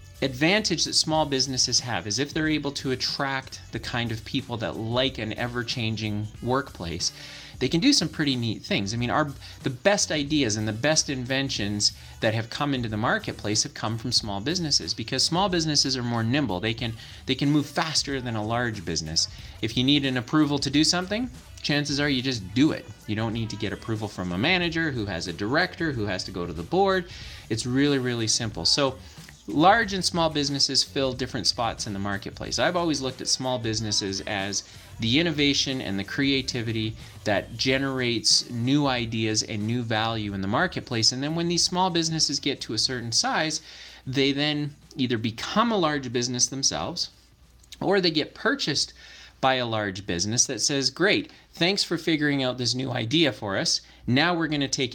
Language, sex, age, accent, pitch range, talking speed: English, male, 30-49, American, 110-145 Hz, 195 wpm